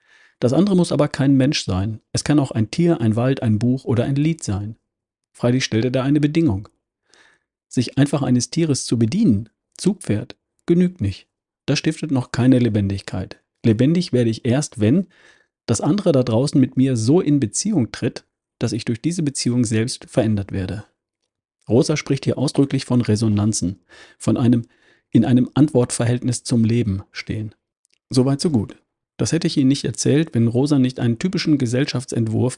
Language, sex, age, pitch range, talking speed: German, male, 40-59, 110-145 Hz, 170 wpm